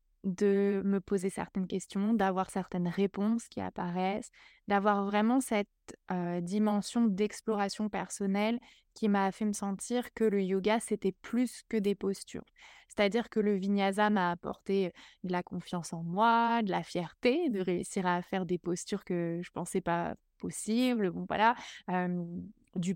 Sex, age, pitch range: female, 20-39, 190-225 Hz